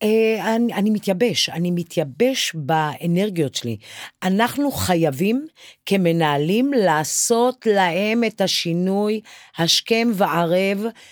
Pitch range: 160-230 Hz